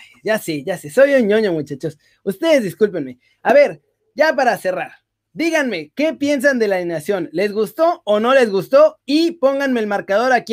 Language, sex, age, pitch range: Spanish, male, 30-49, 180-255 Hz